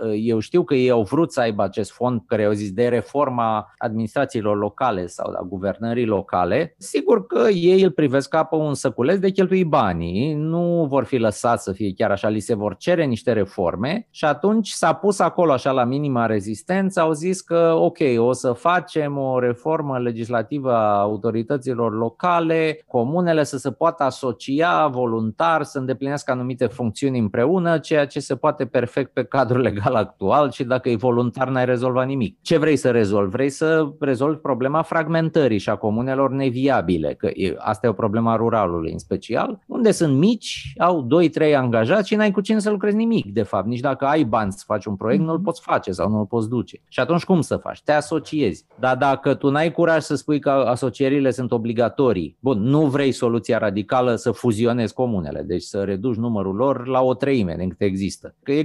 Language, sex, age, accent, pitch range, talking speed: Romanian, male, 30-49, native, 115-155 Hz, 190 wpm